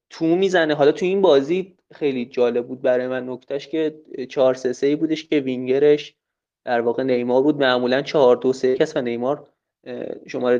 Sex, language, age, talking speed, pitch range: male, Persian, 30-49, 175 wpm, 130-170 Hz